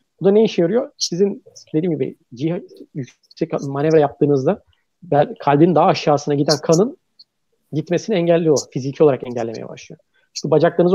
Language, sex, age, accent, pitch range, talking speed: Turkish, male, 40-59, native, 150-190 Hz, 130 wpm